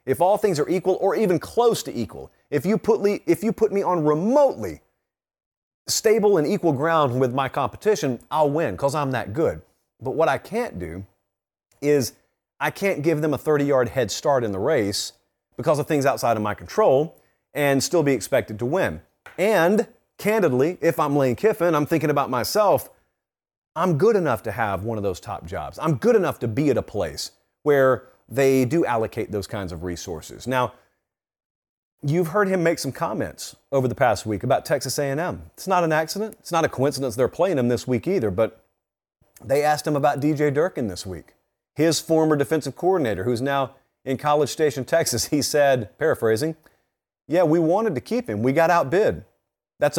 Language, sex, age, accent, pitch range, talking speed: English, male, 40-59, American, 120-170 Hz, 185 wpm